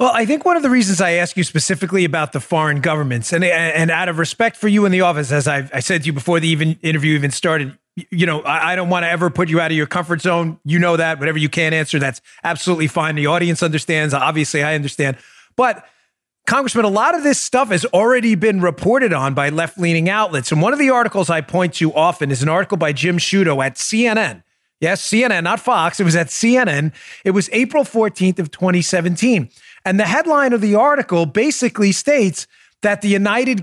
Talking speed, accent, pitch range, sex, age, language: 225 wpm, American, 160-215 Hz, male, 30-49, English